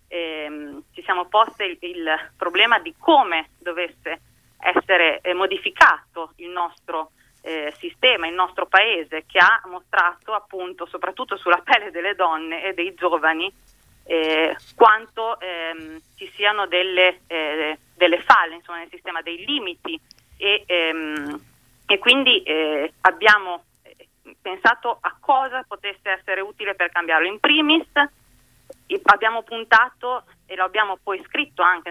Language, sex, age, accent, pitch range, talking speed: Italian, female, 30-49, native, 165-210 Hz, 130 wpm